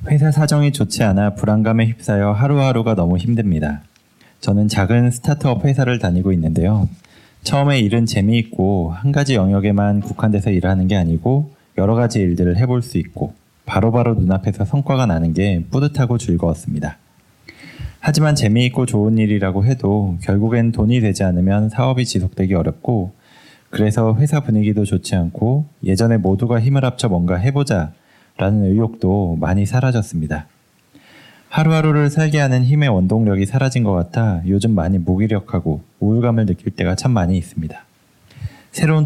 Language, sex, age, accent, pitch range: Korean, male, 20-39, native, 95-120 Hz